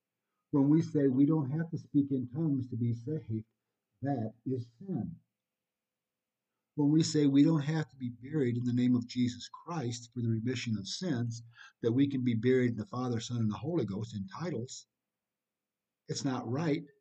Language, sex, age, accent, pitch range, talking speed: English, male, 60-79, American, 115-145 Hz, 190 wpm